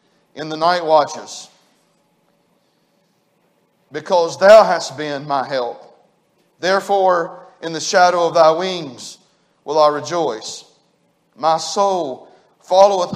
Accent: American